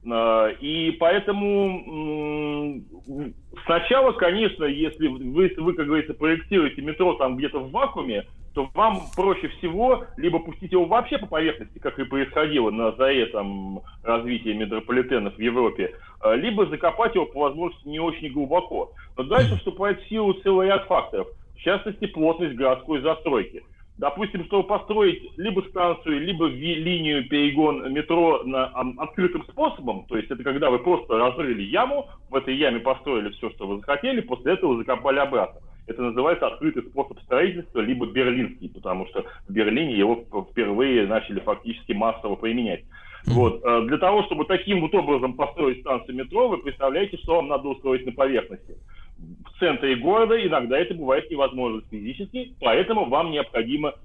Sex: male